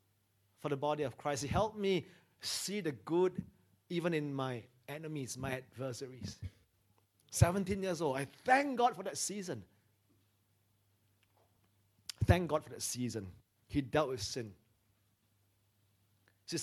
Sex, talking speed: male, 130 wpm